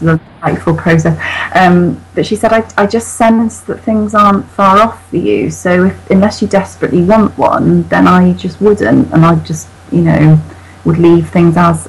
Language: English